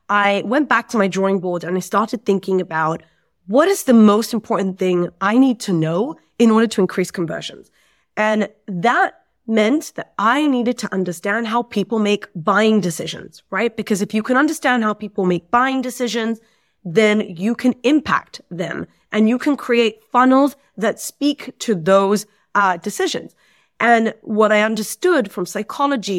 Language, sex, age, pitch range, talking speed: English, female, 30-49, 190-240 Hz, 165 wpm